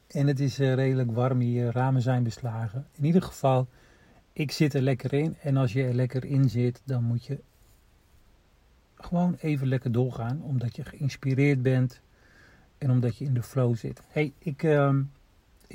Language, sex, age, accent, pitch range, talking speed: Dutch, male, 50-69, Dutch, 120-140 Hz, 170 wpm